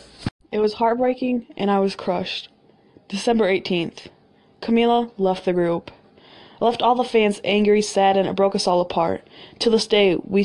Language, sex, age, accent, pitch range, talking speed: English, female, 20-39, American, 185-225 Hz, 170 wpm